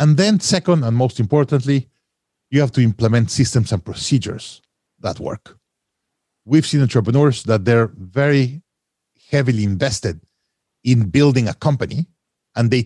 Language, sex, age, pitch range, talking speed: English, male, 50-69, 105-145 Hz, 135 wpm